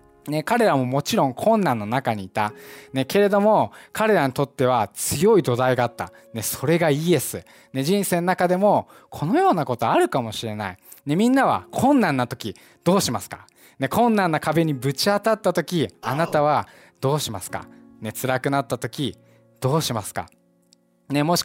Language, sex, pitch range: Japanese, male, 120-190 Hz